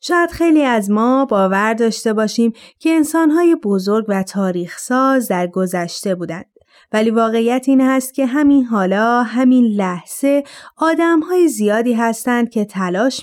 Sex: female